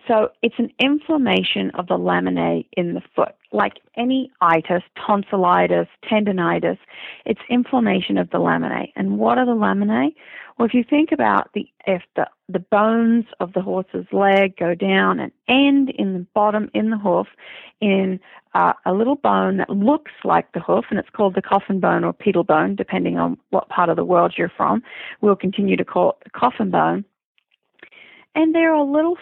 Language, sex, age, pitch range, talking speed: English, female, 40-59, 180-235 Hz, 185 wpm